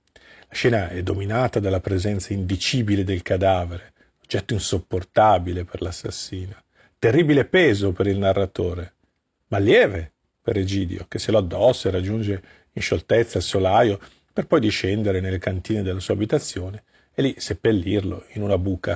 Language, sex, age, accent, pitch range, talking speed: Italian, male, 50-69, native, 95-115 Hz, 145 wpm